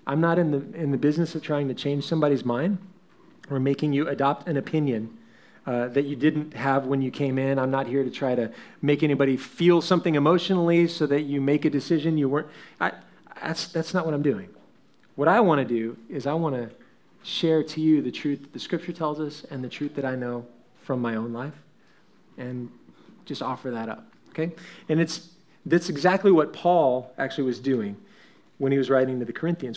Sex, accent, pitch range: male, American, 135-175 Hz